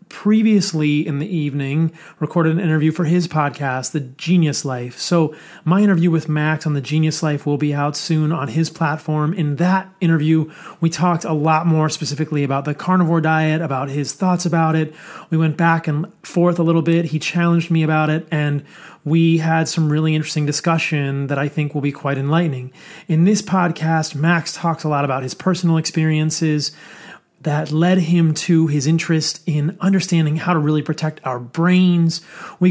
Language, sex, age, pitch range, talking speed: English, male, 30-49, 155-175 Hz, 185 wpm